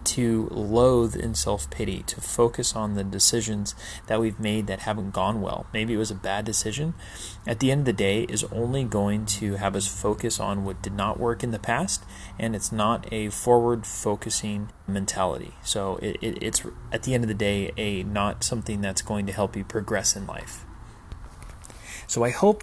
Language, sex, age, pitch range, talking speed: English, male, 30-49, 100-120 Hz, 190 wpm